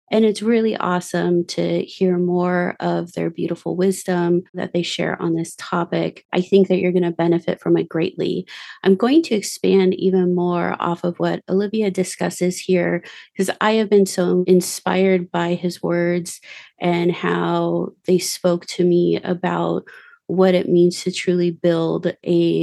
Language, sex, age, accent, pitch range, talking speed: English, female, 30-49, American, 170-185 Hz, 165 wpm